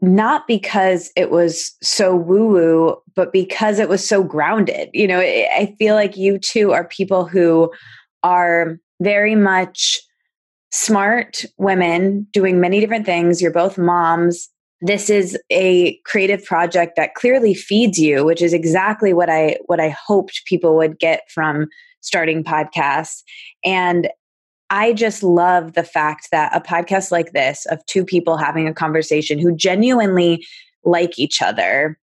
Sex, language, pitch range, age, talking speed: female, English, 165-200 Hz, 20-39, 145 wpm